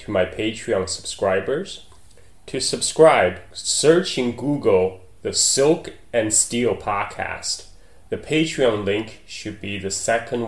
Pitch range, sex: 95-120 Hz, male